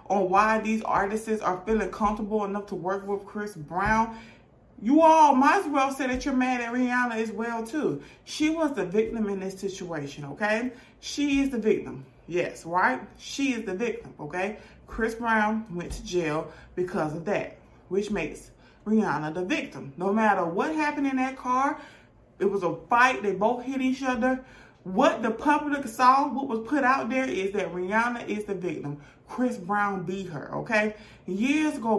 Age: 30-49